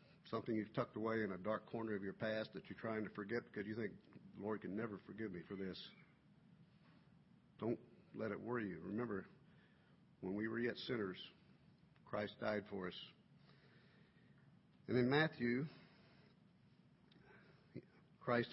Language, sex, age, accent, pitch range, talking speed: English, male, 50-69, American, 105-125 Hz, 150 wpm